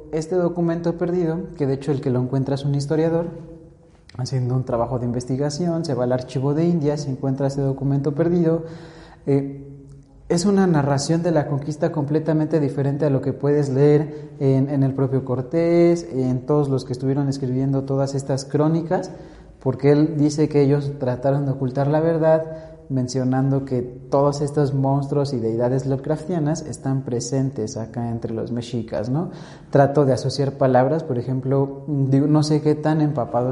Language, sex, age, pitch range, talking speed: Spanish, male, 30-49, 130-155 Hz, 165 wpm